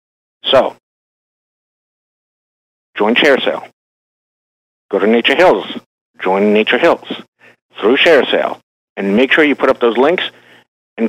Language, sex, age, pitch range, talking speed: English, male, 60-79, 110-150 Hz, 115 wpm